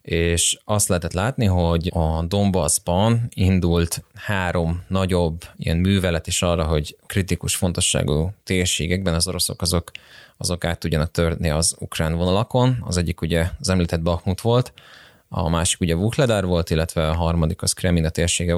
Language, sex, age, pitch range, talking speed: Hungarian, male, 20-39, 85-95 Hz, 145 wpm